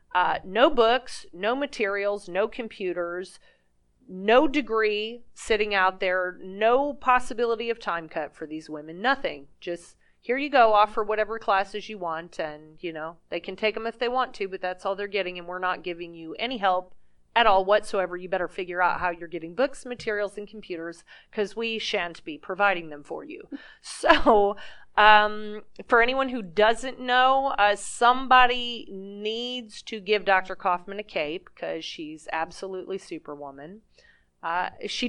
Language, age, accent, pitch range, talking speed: English, 30-49, American, 185-240 Hz, 165 wpm